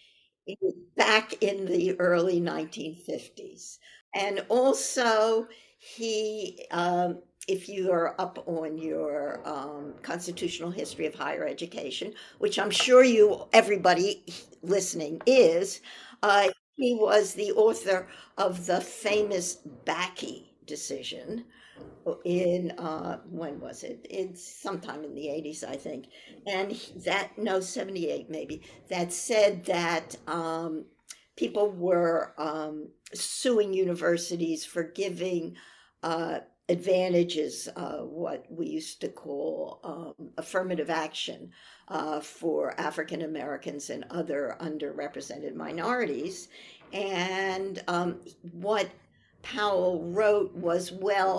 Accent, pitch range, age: American, 165-210 Hz, 60-79